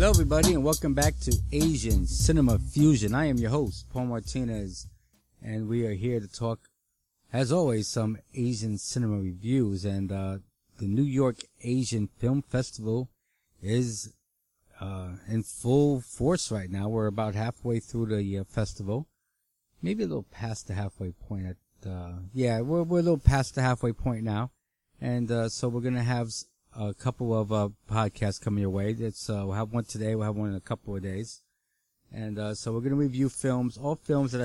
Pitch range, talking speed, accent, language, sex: 105-130 Hz, 190 wpm, American, English, male